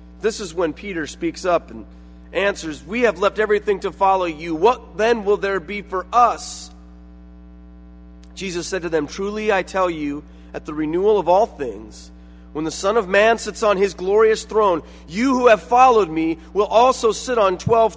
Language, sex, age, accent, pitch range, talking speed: English, male, 30-49, American, 155-240 Hz, 185 wpm